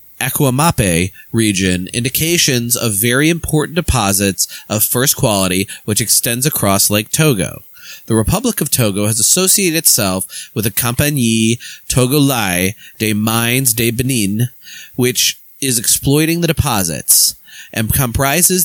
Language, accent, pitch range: English, American, 105-135 Hz